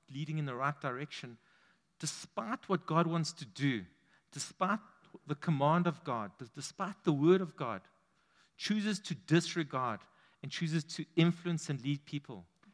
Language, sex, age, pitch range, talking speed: English, male, 50-69, 140-175 Hz, 145 wpm